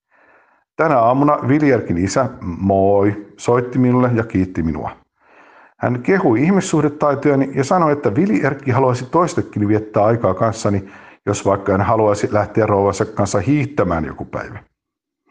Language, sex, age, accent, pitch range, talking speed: Finnish, male, 50-69, native, 100-140 Hz, 125 wpm